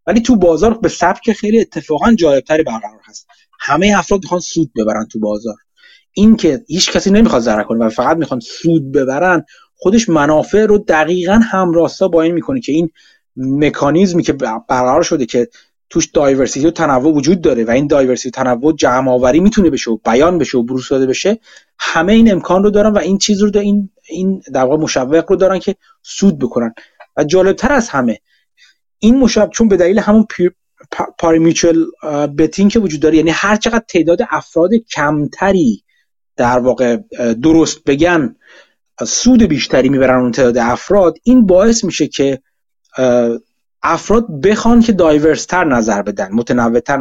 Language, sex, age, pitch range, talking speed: Persian, male, 30-49, 135-205 Hz, 155 wpm